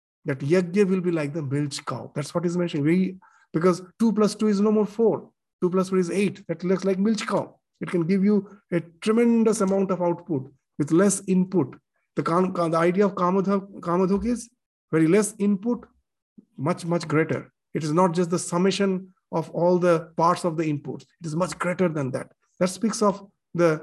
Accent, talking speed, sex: Indian, 195 wpm, male